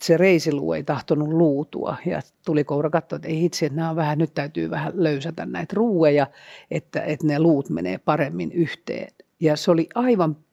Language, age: Finnish, 50-69